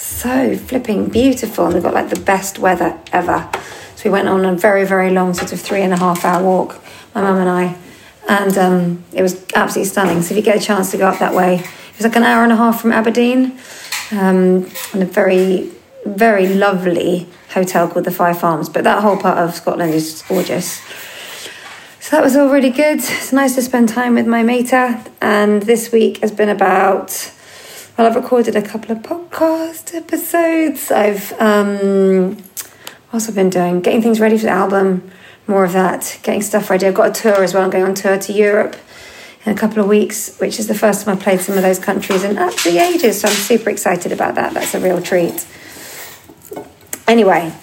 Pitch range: 185-225 Hz